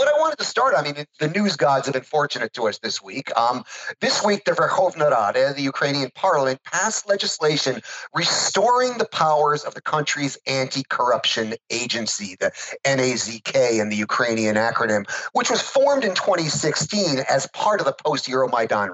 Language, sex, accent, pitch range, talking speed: English, male, American, 135-205 Hz, 165 wpm